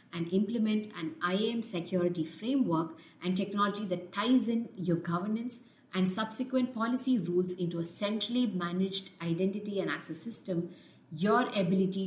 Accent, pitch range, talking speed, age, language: Indian, 175-220 Hz, 135 wpm, 50-69, English